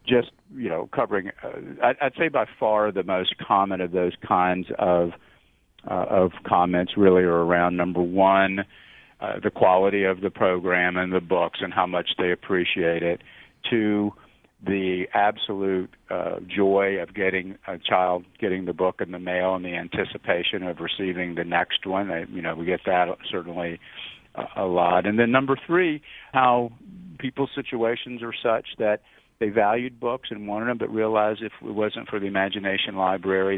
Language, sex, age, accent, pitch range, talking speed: English, male, 50-69, American, 90-110 Hz, 170 wpm